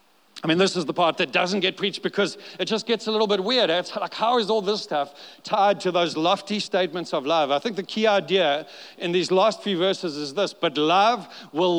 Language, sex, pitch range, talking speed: English, male, 180-225 Hz, 240 wpm